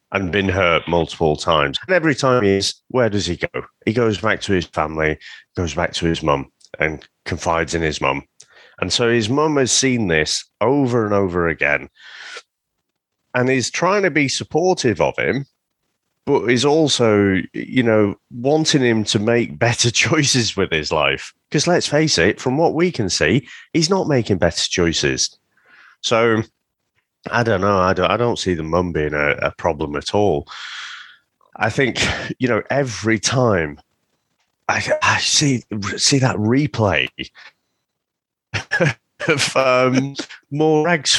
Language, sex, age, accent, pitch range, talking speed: English, male, 30-49, British, 95-145 Hz, 155 wpm